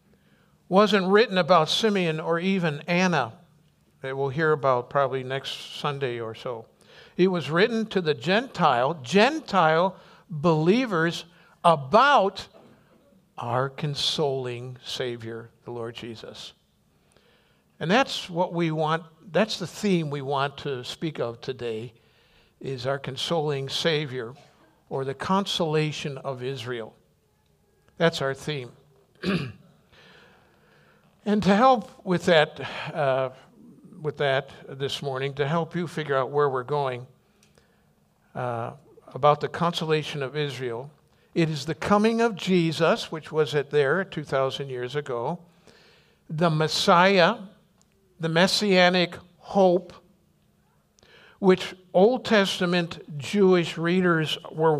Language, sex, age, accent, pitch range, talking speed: English, male, 60-79, American, 140-185 Hz, 115 wpm